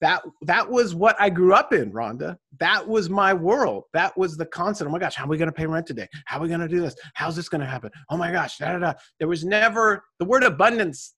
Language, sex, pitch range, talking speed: English, male, 150-225 Hz, 280 wpm